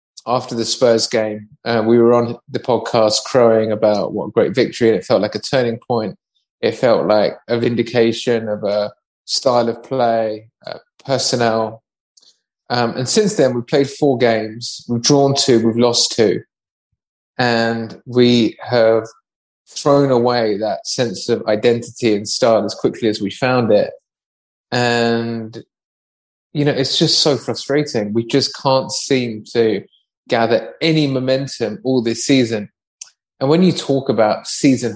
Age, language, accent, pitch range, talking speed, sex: 20-39, English, British, 110-135 Hz, 155 wpm, male